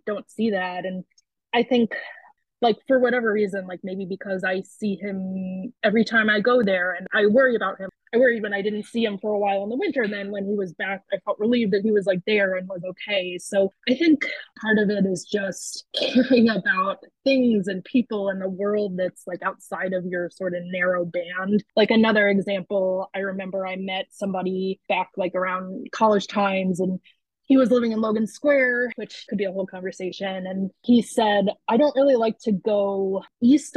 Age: 20-39